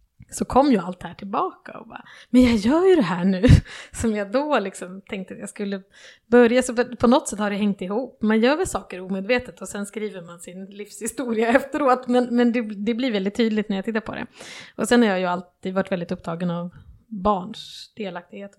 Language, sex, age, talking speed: Swedish, female, 20-39, 220 wpm